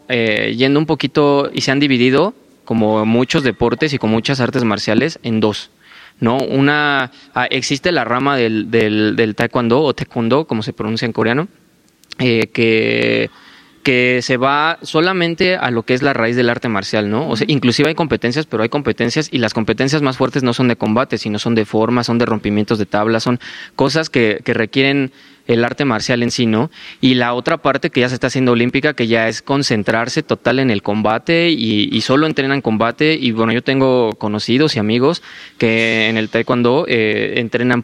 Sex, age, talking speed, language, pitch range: male, 20-39, 195 wpm, Spanish, 115-140 Hz